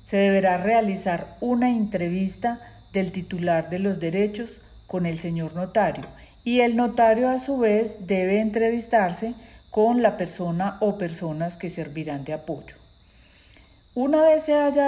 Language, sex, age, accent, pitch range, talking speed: Spanish, female, 40-59, Colombian, 170-220 Hz, 140 wpm